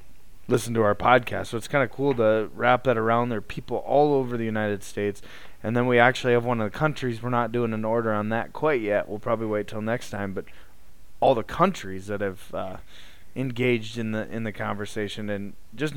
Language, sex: English, male